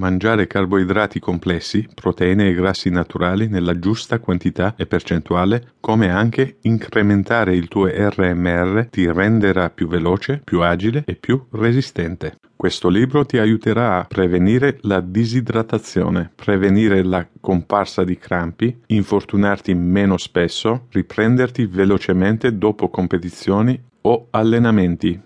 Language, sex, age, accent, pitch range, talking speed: Italian, male, 40-59, native, 90-110 Hz, 115 wpm